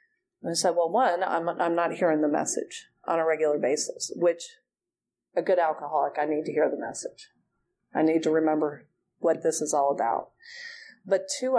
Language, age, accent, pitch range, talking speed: English, 40-59, American, 165-275 Hz, 185 wpm